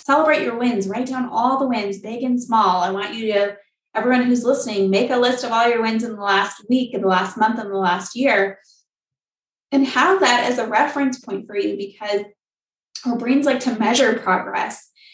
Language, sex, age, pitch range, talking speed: English, female, 20-39, 195-230 Hz, 210 wpm